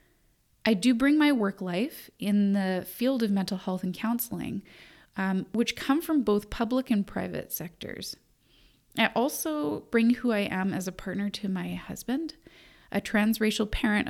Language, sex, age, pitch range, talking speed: English, female, 30-49, 185-235 Hz, 160 wpm